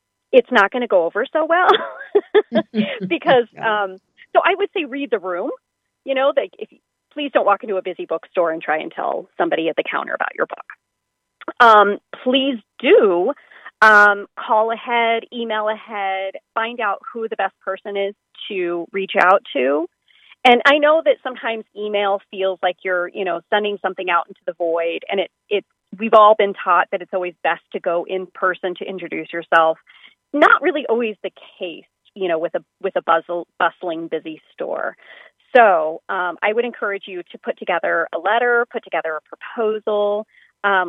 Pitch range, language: 180-240 Hz, English